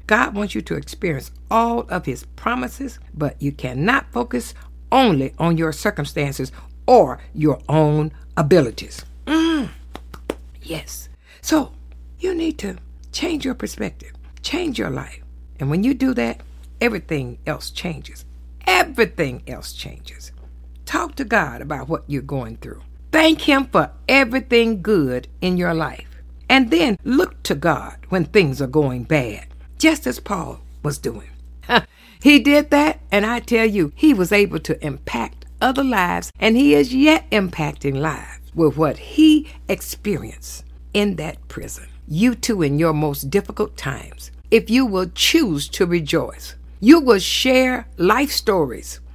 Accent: American